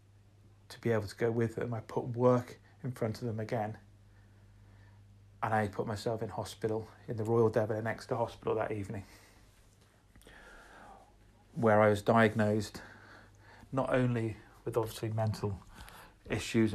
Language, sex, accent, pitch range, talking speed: English, male, British, 100-115 Hz, 145 wpm